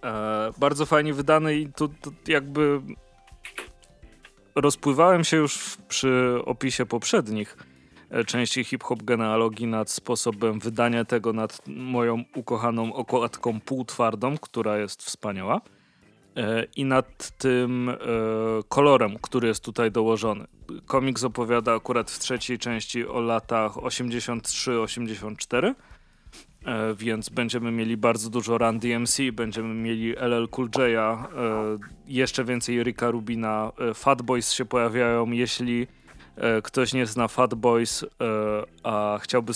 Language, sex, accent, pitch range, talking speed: Polish, male, native, 110-125 Hz, 110 wpm